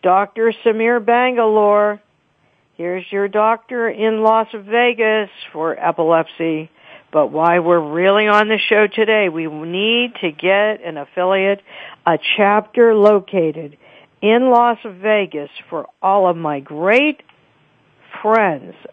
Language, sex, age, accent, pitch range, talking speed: English, female, 60-79, American, 170-230 Hz, 115 wpm